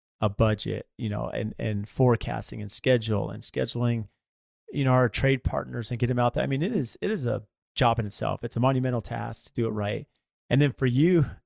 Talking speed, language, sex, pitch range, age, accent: 225 wpm, English, male, 110-130 Hz, 30-49, American